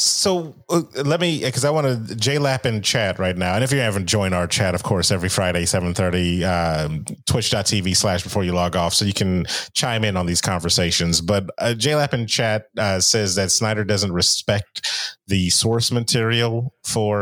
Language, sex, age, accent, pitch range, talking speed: English, male, 30-49, American, 100-130 Hz, 190 wpm